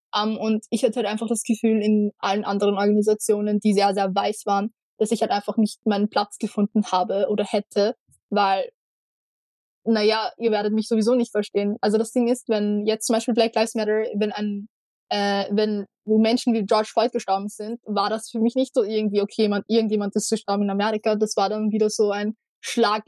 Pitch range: 205-225 Hz